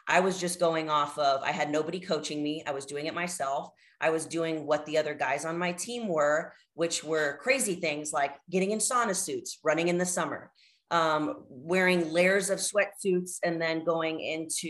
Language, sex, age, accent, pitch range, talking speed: English, female, 30-49, American, 155-180 Hz, 200 wpm